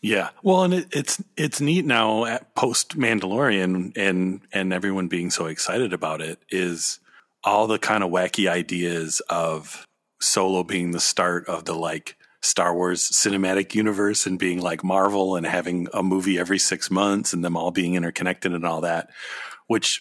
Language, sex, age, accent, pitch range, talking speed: English, male, 40-59, American, 85-100 Hz, 170 wpm